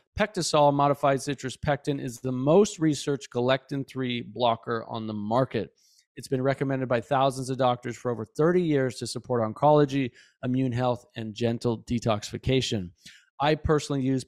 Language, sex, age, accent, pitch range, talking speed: English, male, 40-59, American, 125-155 Hz, 145 wpm